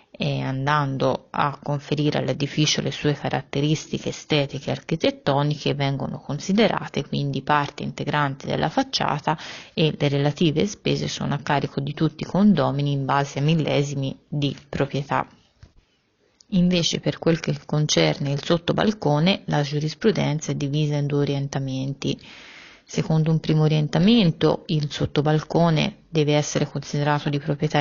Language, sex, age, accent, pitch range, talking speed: Italian, female, 30-49, native, 145-160 Hz, 130 wpm